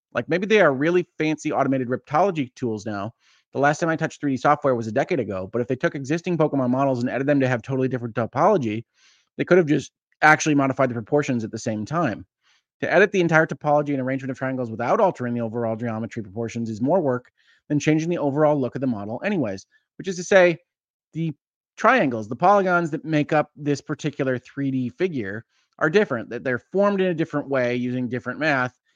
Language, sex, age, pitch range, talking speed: English, male, 30-49, 125-150 Hz, 210 wpm